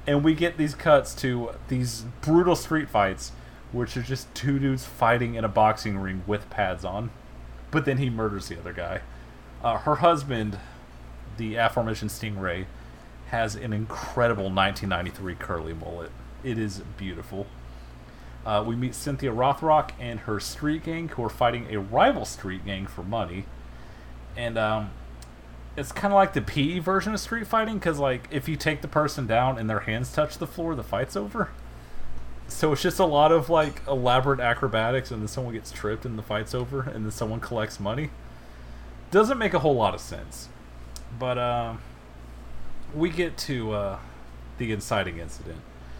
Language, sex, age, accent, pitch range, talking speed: English, male, 30-49, American, 90-130 Hz, 170 wpm